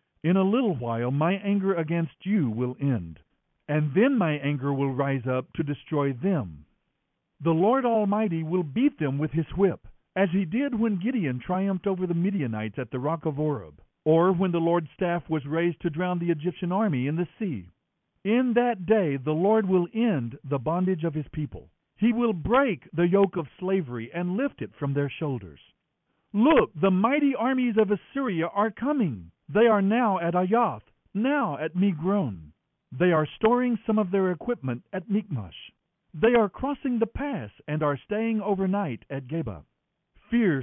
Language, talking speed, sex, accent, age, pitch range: English, 175 wpm, male, American, 60-79, 145-225 Hz